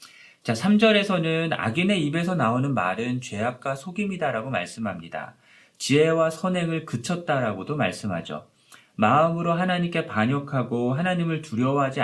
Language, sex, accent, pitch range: Korean, male, native, 120-175 Hz